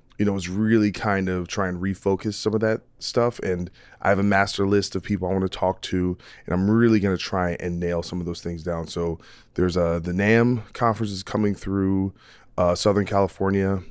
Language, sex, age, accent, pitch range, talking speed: English, male, 20-39, American, 85-100 Hz, 220 wpm